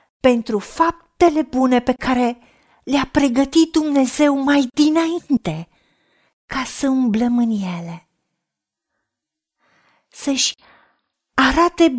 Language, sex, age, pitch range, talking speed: Romanian, female, 40-59, 225-290 Hz, 85 wpm